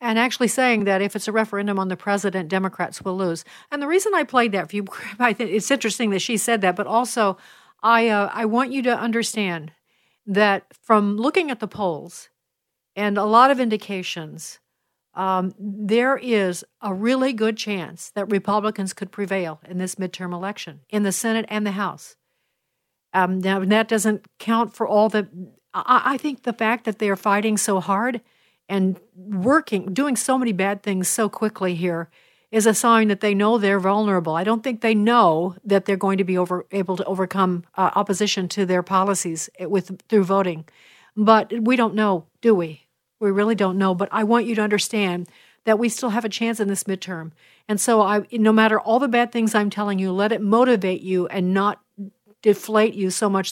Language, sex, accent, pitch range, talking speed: English, female, American, 190-225 Hz, 190 wpm